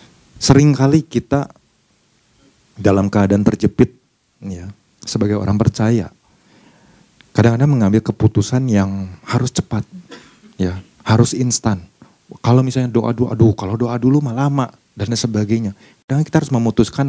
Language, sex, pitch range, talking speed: Indonesian, male, 105-125 Hz, 125 wpm